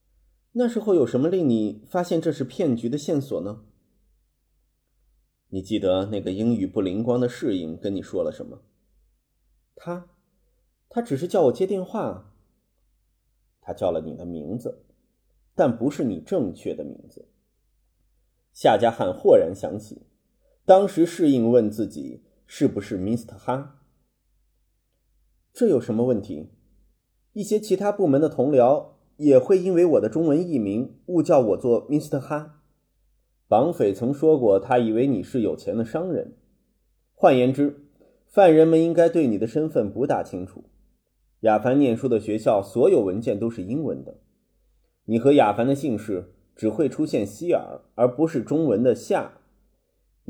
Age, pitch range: 30-49, 115-175 Hz